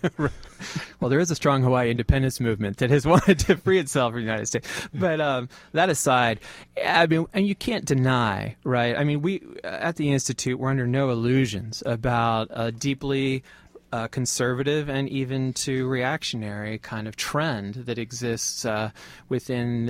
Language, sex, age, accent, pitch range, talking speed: English, male, 30-49, American, 115-135 Hz, 165 wpm